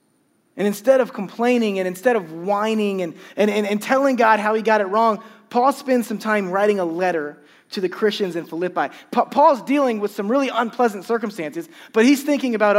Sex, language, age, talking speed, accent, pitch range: male, English, 20-39, 200 wpm, American, 200-260 Hz